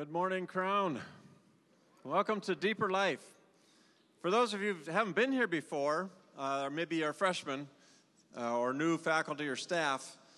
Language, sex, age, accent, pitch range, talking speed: English, male, 40-59, American, 155-195 Hz, 155 wpm